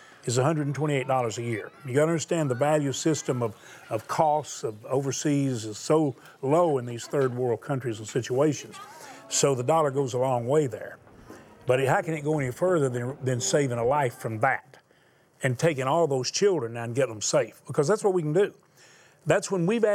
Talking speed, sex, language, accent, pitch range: 200 wpm, male, English, American, 135-180 Hz